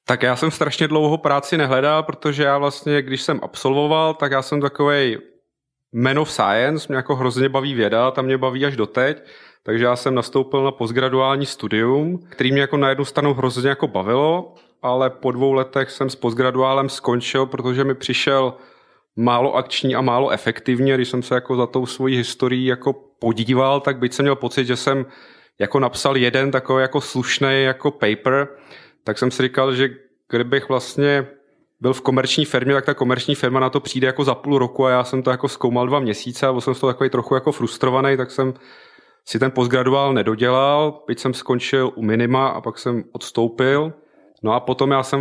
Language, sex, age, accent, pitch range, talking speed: Czech, male, 30-49, native, 130-140 Hz, 195 wpm